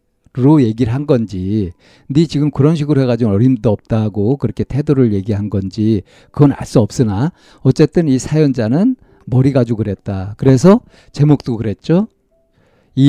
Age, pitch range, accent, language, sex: 50-69, 110-145 Hz, native, Korean, male